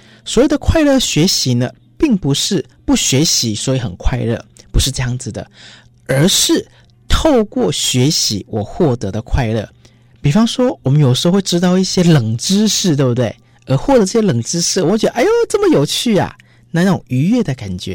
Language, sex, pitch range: Chinese, male, 120-185 Hz